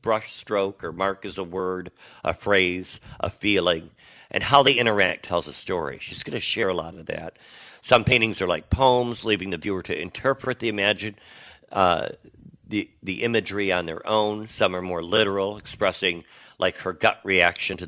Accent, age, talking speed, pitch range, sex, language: American, 50-69, 190 wpm, 95-125 Hz, male, English